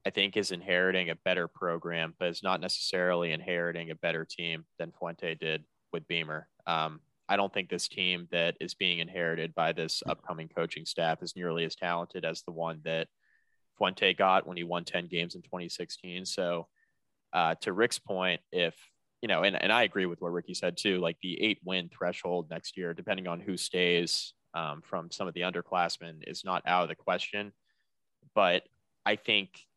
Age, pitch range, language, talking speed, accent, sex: 20-39, 85-90 Hz, English, 190 wpm, American, male